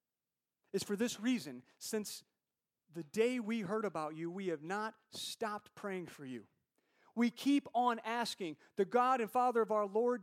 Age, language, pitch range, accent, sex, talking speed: 40-59, English, 175-245 Hz, American, male, 170 wpm